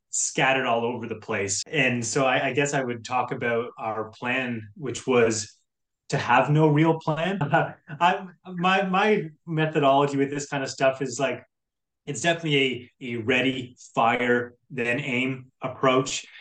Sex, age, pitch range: male, 20-39, 115-140 Hz